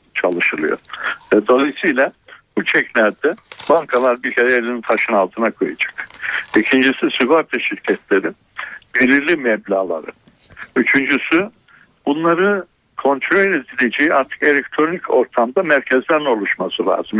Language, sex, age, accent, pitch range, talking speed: Turkish, male, 60-79, native, 115-140 Hz, 90 wpm